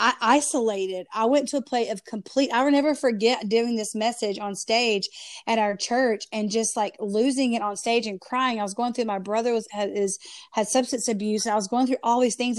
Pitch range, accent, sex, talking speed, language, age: 210-255 Hz, American, female, 240 wpm, English, 30-49